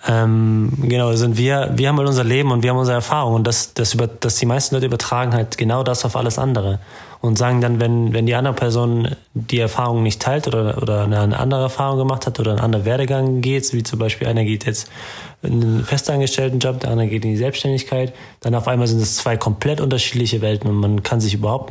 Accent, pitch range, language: German, 110-125 Hz, German